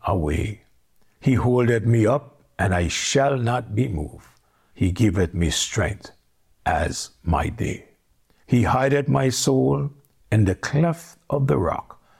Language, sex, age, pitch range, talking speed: English, male, 60-79, 90-120 Hz, 140 wpm